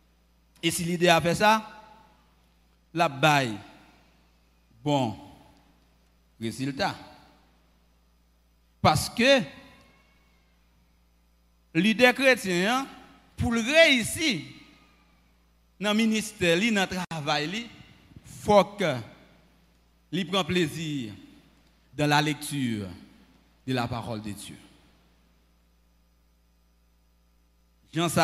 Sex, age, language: male, 50-69, French